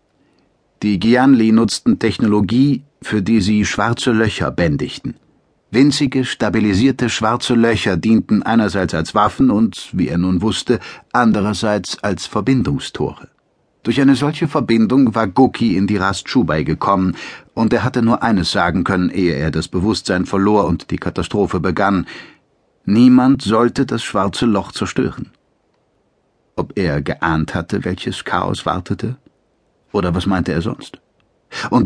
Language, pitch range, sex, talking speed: German, 95-125 Hz, male, 135 wpm